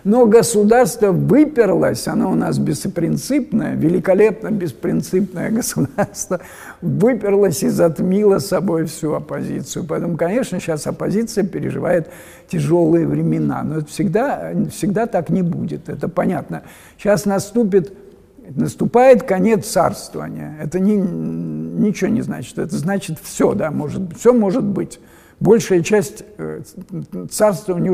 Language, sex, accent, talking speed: Russian, male, native, 115 wpm